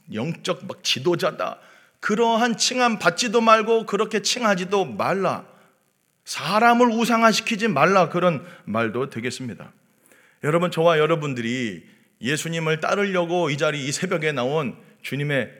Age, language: 40-59, Korean